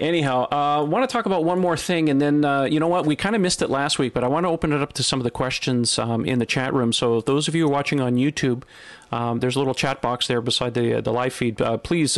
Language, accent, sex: English, American, male